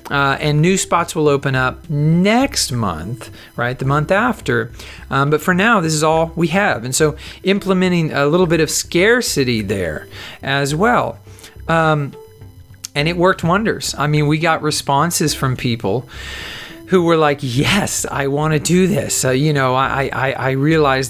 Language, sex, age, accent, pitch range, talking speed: English, male, 40-59, American, 125-160 Hz, 175 wpm